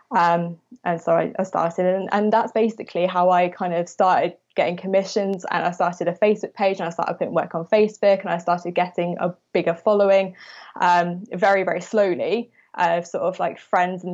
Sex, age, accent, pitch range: female, 20-39, British, 175-200 Hz